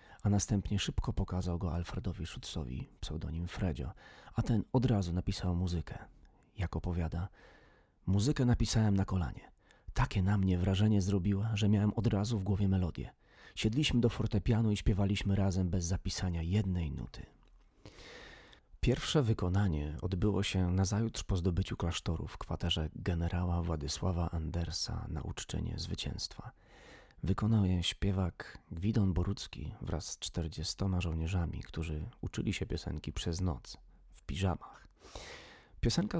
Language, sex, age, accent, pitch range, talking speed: Polish, male, 40-59, native, 85-105 Hz, 130 wpm